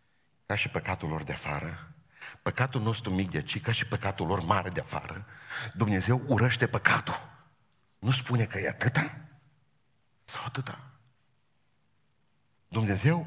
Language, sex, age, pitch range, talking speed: Romanian, male, 50-69, 115-155 Hz, 130 wpm